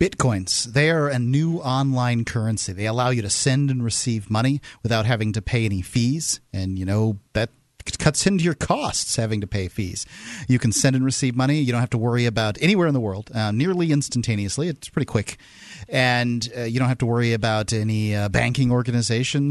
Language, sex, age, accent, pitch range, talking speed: English, male, 40-59, American, 120-155 Hz, 205 wpm